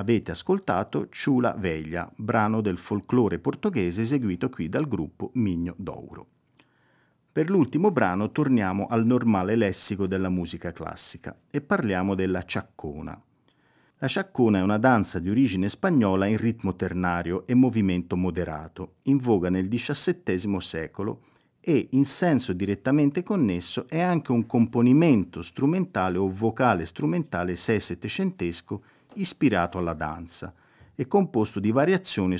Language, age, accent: Italian, 50-69, native